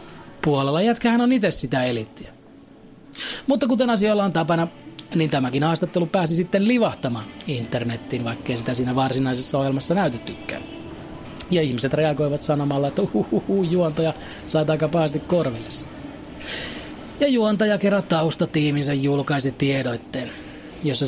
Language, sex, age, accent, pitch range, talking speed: Finnish, male, 30-49, native, 130-170 Hz, 115 wpm